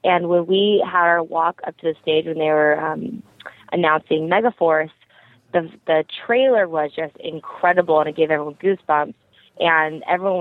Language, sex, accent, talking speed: English, female, American, 165 wpm